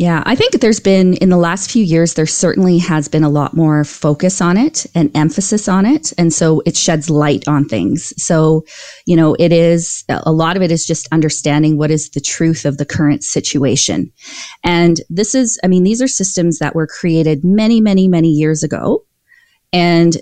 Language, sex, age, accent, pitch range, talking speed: English, female, 30-49, American, 155-190 Hz, 200 wpm